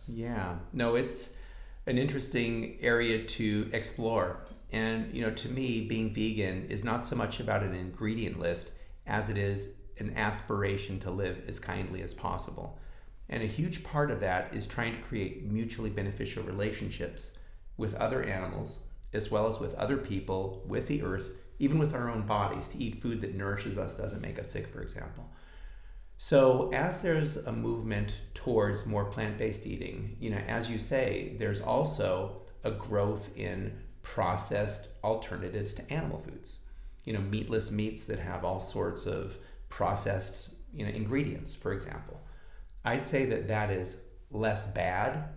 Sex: male